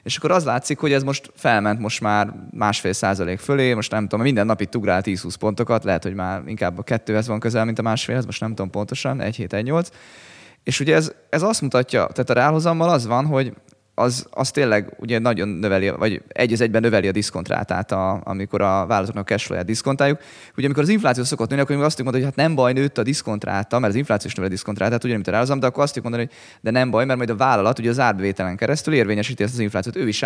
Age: 20-39